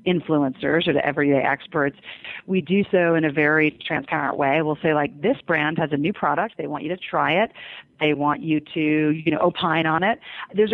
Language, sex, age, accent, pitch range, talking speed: English, female, 40-59, American, 150-180 Hz, 210 wpm